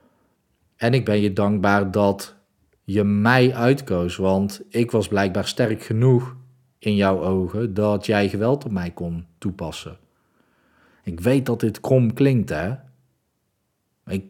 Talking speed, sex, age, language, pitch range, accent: 140 wpm, male, 40-59, Dutch, 95-115 Hz, Dutch